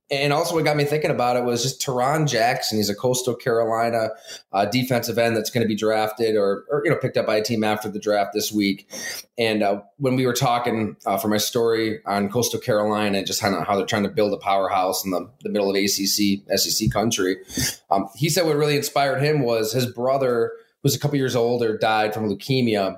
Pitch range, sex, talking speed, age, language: 105-130 Hz, male, 225 wpm, 30-49, English